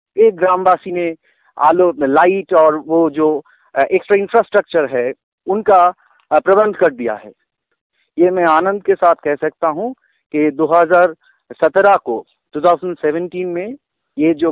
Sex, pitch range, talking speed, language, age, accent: male, 150-200 Hz, 130 wpm, Hindi, 50-69, native